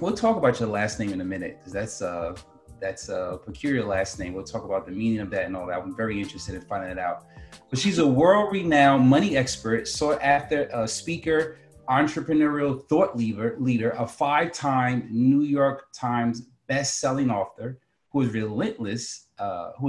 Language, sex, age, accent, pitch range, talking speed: English, male, 30-49, American, 110-140 Hz, 180 wpm